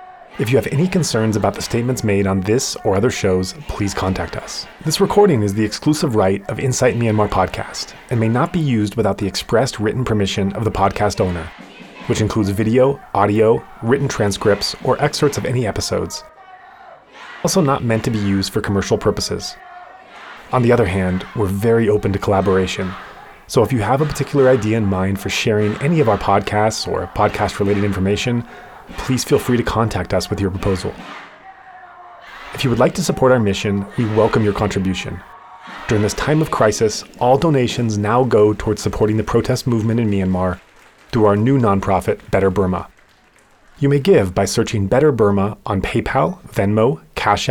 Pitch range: 100-130 Hz